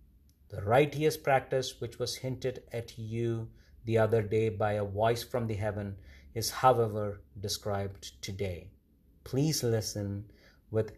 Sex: male